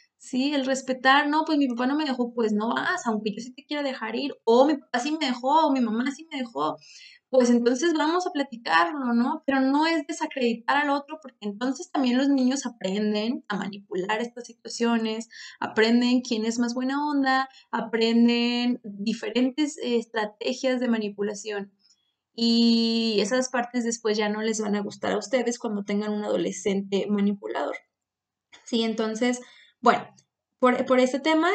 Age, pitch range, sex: 20-39, 230-280 Hz, female